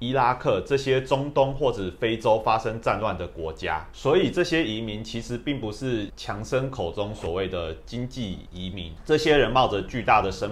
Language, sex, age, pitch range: Chinese, male, 30-49, 85-115 Hz